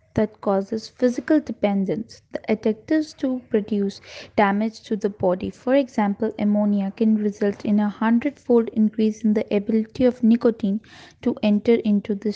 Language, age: English, 20-39